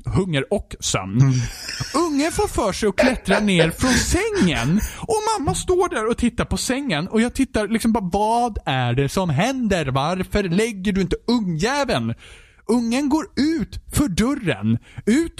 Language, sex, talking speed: Swedish, male, 160 wpm